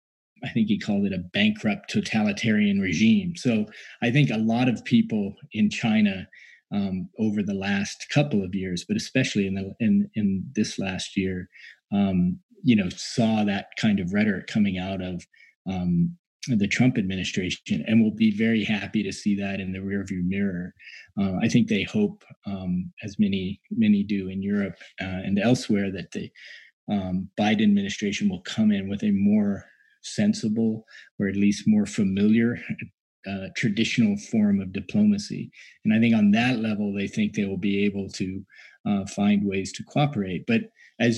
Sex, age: male, 20-39